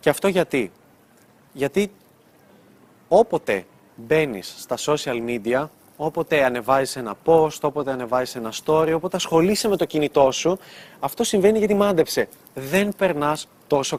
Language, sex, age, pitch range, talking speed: Greek, male, 20-39, 130-175 Hz, 130 wpm